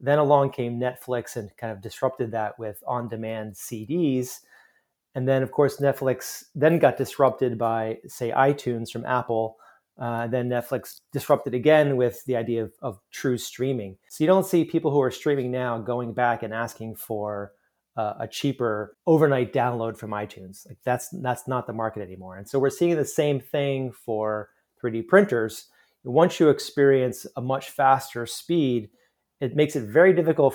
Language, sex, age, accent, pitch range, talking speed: English, male, 30-49, American, 115-140 Hz, 170 wpm